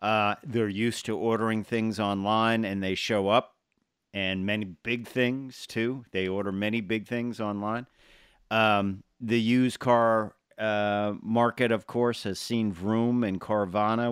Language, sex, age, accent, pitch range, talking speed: English, male, 50-69, American, 105-120 Hz, 150 wpm